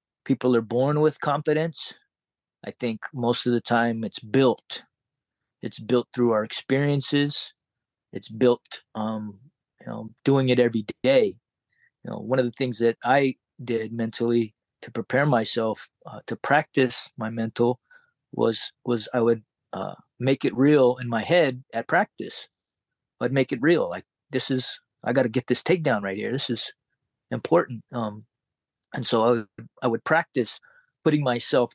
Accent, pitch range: American, 115-145 Hz